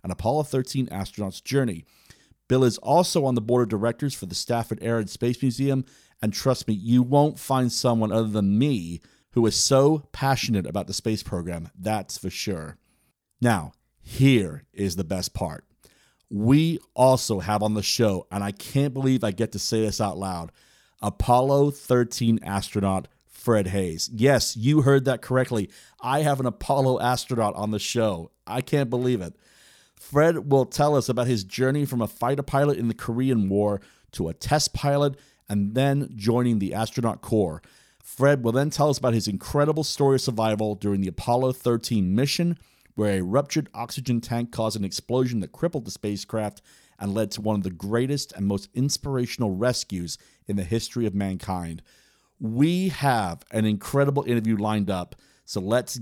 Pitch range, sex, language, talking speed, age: 105-135 Hz, male, English, 175 wpm, 40-59